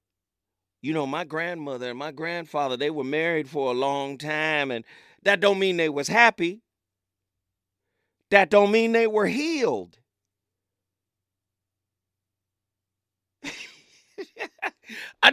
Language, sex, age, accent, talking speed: English, male, 40-59, American, 110 wpm